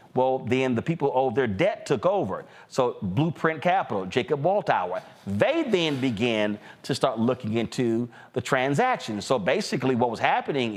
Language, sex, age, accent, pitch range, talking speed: English, male, 40-59, American, 125-175 Hz, 160 wpm